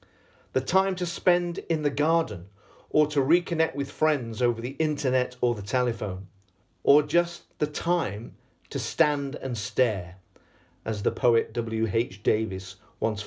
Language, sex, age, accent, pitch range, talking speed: English, male, 40-59, British, 105-155 Hz, 150 wpm